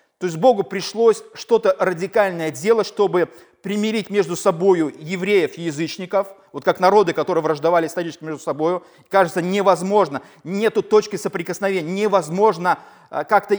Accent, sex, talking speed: native, male, 130 wpm